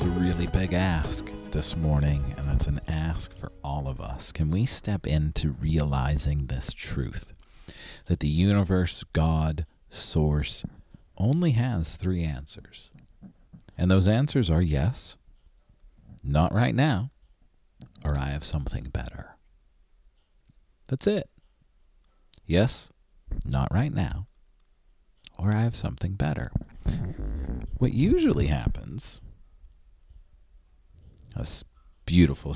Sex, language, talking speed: male, English, 110 wpm